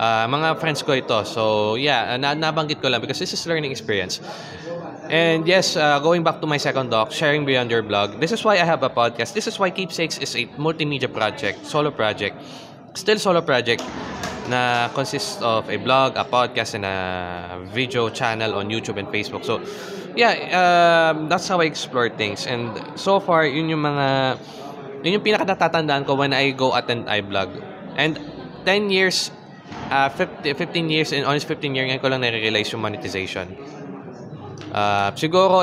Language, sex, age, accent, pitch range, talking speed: English, male, 20-39, Filipino, 120-165 Hz, 175 wpm